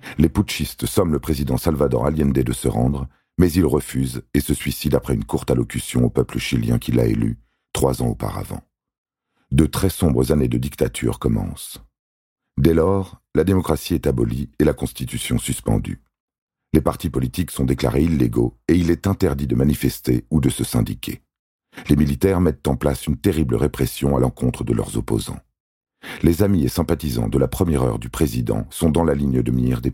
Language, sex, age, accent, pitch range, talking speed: French, male, 40-59, French, 65-85 Hz, 185 wpm